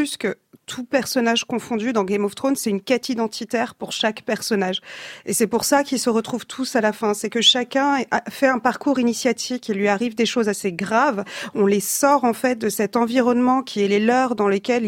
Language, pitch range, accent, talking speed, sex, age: French, 210-255 Hz, French, 220 wpm, female, 40-59